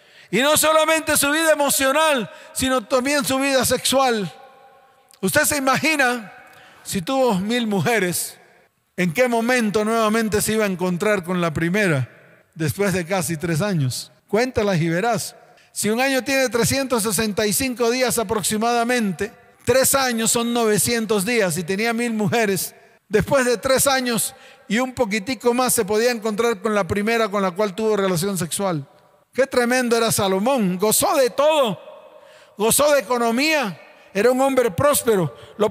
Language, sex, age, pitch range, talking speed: Spanish, male, 40-59, 215-275 Hz, 150 wpm